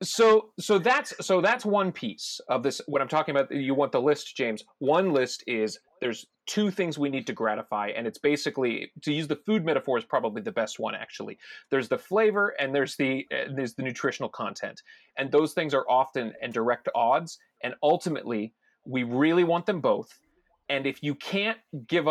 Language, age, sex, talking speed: English, 30-49, male, 200 wpm